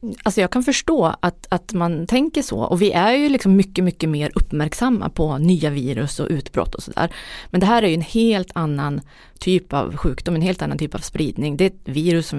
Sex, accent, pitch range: female, native, 150-195 Hz